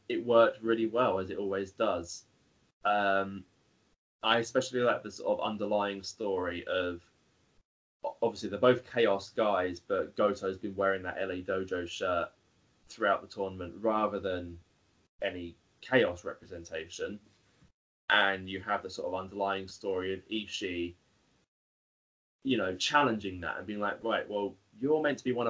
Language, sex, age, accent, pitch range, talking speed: English, male, 20-39, British, 95-115 Hz, 150 wpm